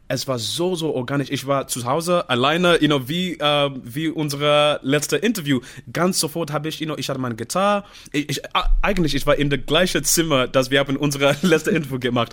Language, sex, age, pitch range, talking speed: German, male, 20-39, 125-160 Hz, 205 wpm